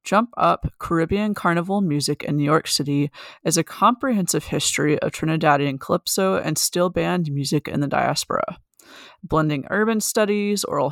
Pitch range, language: 150-180 Hz, English